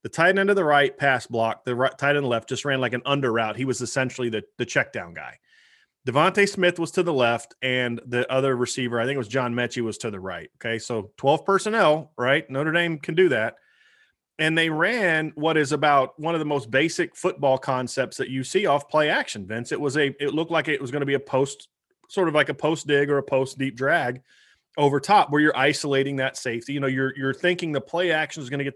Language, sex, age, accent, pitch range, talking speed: English, male, 30-49, American, 130-165 Hz, 250 wpm